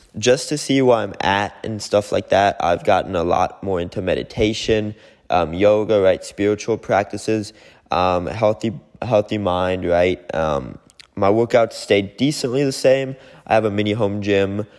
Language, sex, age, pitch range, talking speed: English, male, 20-39, 100-120 Hz, 170 wpm